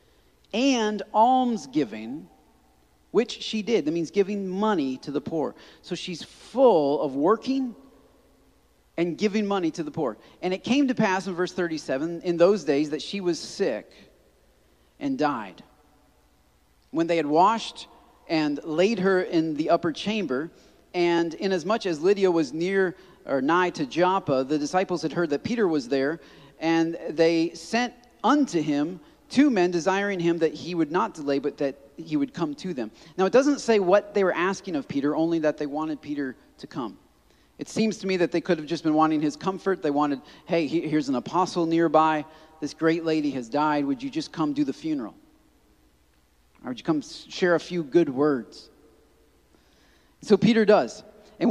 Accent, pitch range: American, 155-210 Hz